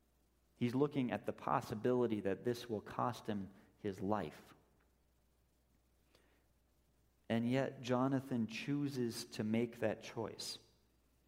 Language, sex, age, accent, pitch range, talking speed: English, male, 40-59, American, 90-145 Hz, 105 wpm